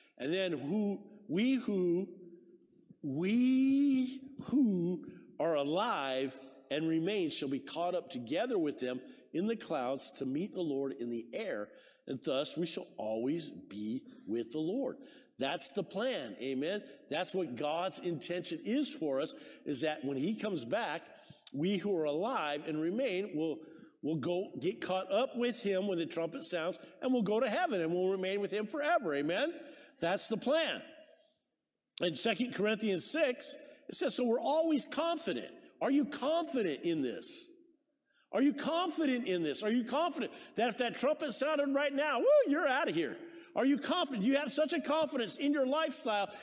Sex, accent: male, American